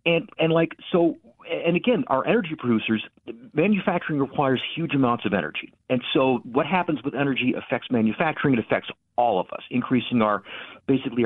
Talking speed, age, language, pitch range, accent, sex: 165 wpm, 50-69, English, 125-170 Hz, American, male